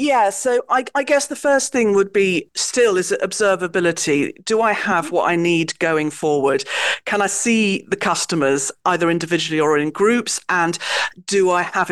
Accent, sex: British, female